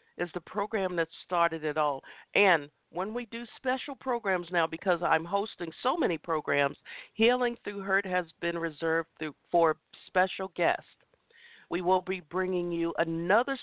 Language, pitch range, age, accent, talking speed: English, 155-200 Hz, 50-69, American, 155 wpm